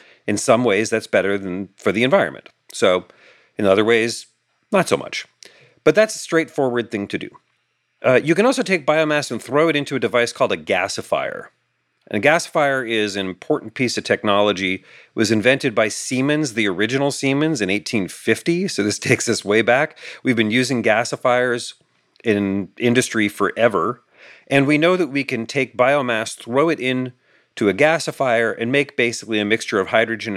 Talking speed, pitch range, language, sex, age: 180 wpm, 110-145 Hz, English, male, 40-59